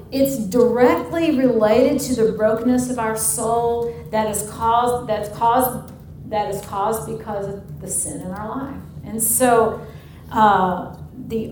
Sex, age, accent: female, 50-69, American